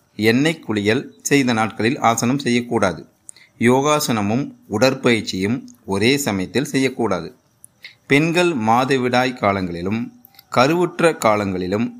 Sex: male